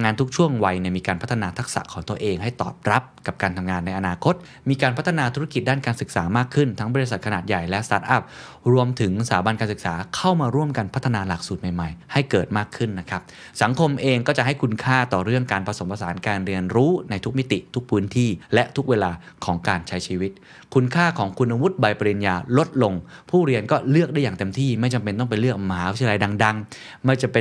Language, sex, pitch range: Thai, male, 100-135 Hz